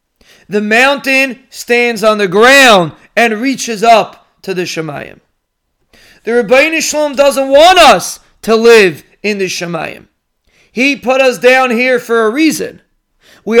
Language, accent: English, American